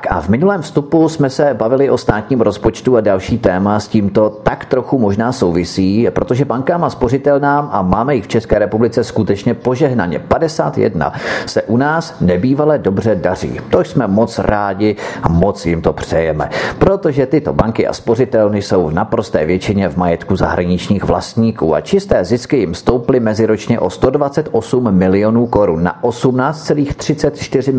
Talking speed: 155 wpm